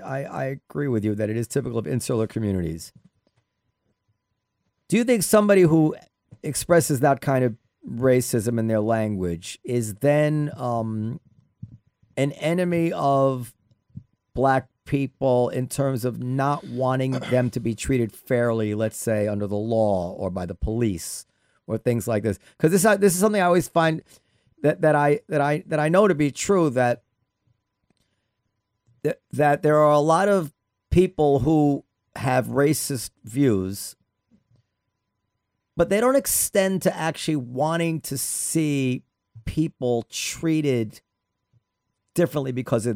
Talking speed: 140 wpm